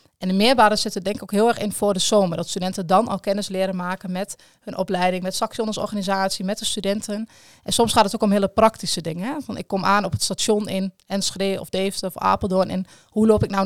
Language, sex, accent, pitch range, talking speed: Dutch, female, Dutch, 185-215 Hz, 255 wpm